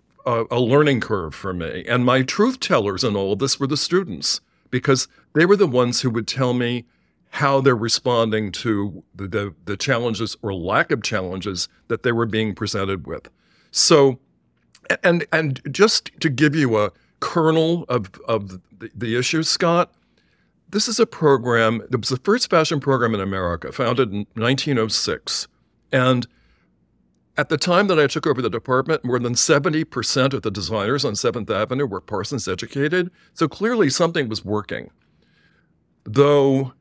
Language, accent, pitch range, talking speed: English, American, 110-145 Hz, 165 wpm